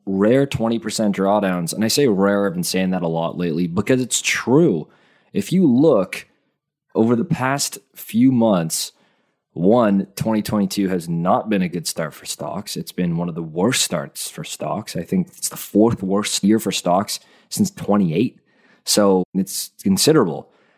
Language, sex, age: English, male, 20-39